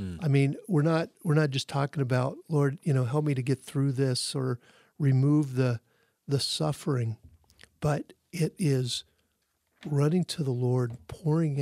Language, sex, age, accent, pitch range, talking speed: English, male, 50-69, American, 135-170 Hz, 160 wpm